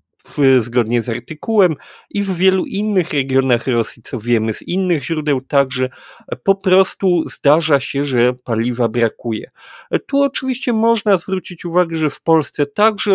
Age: 40-59